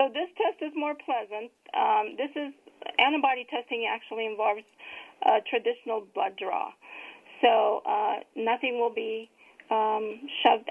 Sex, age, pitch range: female, 40-59, 220-300 Hz